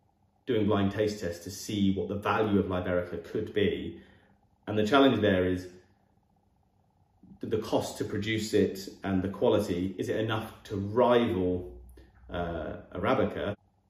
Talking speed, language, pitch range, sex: 140 wpm, English, 95-105 Hz, male